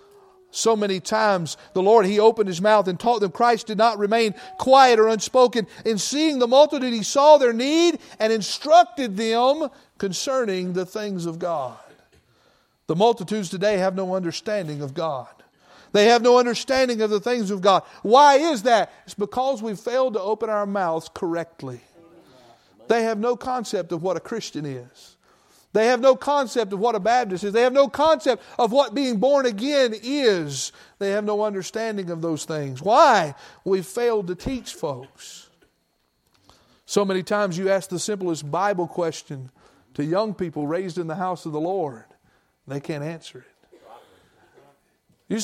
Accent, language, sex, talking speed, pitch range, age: American, English, male, 170 wpm, 185-250 Hz, 50-69